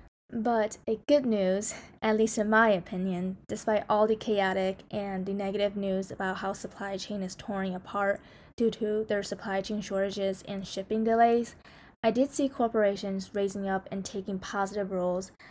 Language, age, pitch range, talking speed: English, 20-39, 190-220 Hz, 165 wpm